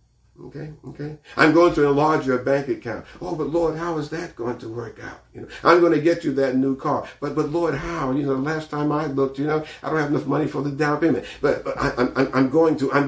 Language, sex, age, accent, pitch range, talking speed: English, male, 50-69, American, 130-160 Hz, 270 wpm